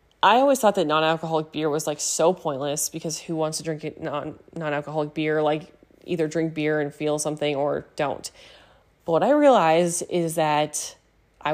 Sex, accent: female, American